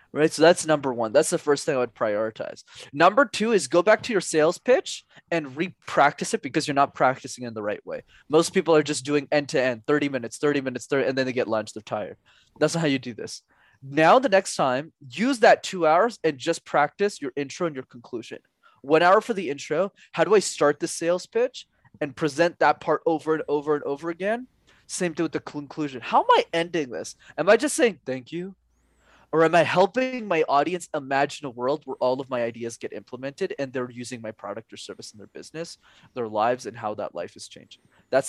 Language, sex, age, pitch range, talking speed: English, male, 20-39, 135-185 Hz, 225 wpm